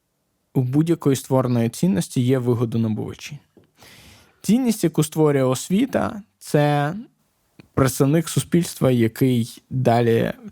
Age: 20-39